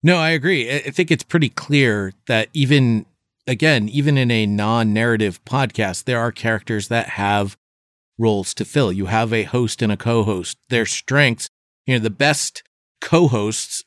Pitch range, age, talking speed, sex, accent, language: 105-125 Hz, 40-59, 165 wpm, male, American, English